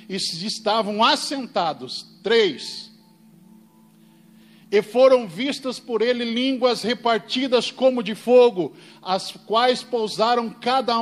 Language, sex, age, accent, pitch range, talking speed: Portuguese, male, 50-69, Brazilian, 185-240 Hz, 100 wpm